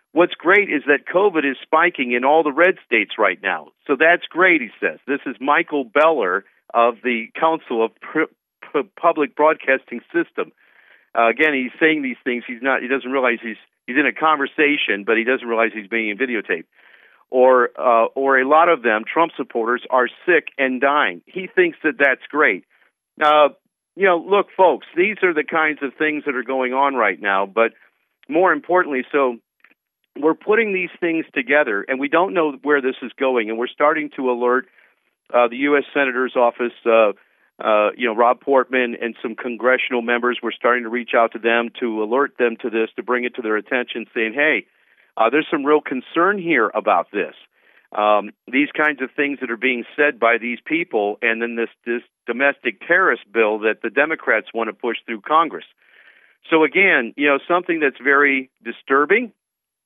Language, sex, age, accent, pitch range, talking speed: English, male, 50-69, American, 120-150 Hz, 190 wpm